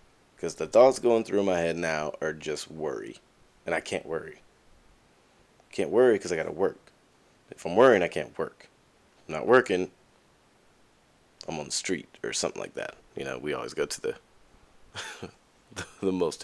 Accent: American